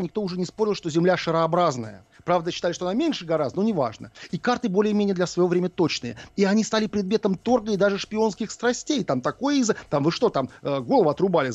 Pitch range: 140-210 Hz